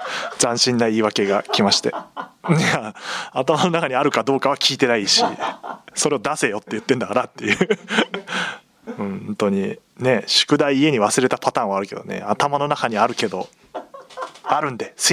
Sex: male